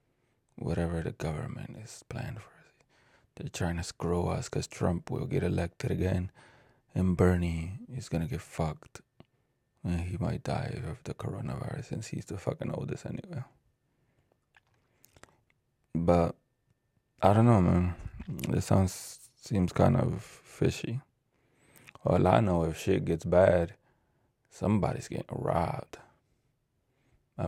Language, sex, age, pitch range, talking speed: English, male, 20-39, 90-120 Hz, 125 wpm